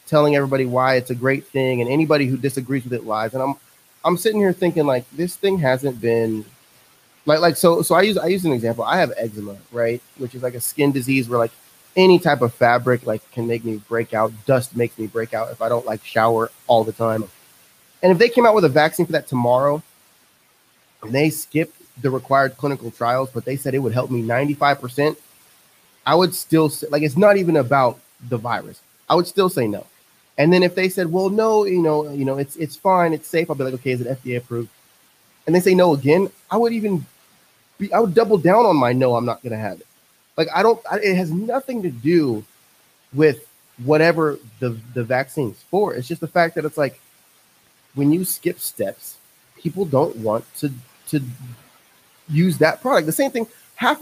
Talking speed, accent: 220 wpm, American